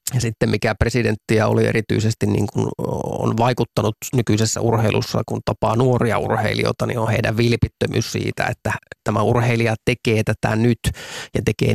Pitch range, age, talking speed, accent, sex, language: 110-125 Hz, 30-49, 145 wpm, native, male, Finnish